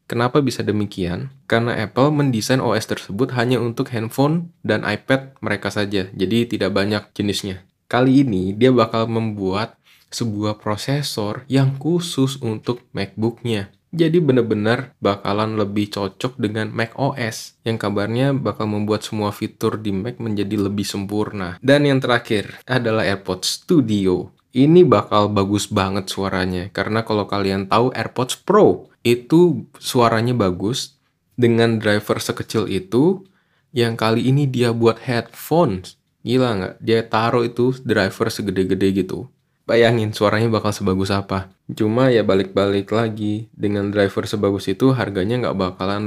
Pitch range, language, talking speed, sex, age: 100-125 Hz, Indonesian, 135 wpm, male, 20-39